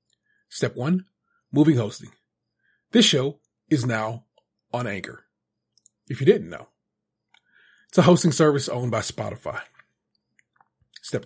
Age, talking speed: 30-49, 115 wpm